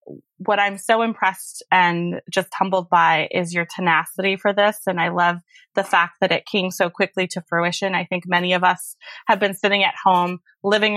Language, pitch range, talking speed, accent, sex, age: English, 175-195 Hz, 195 wpm, American, female, 20-39